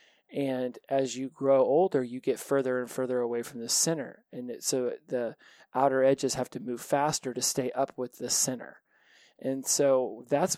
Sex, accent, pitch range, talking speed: male, American, 125-150 Hz, 180 wpm